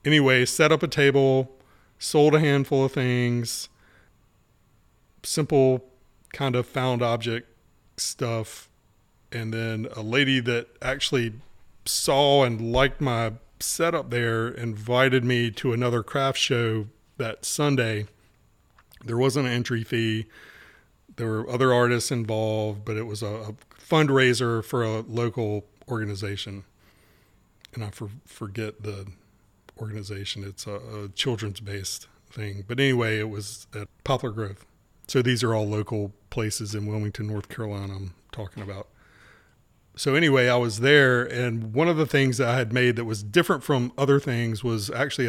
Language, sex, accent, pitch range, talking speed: English, male, American, 105-130 Hz, 145 wpm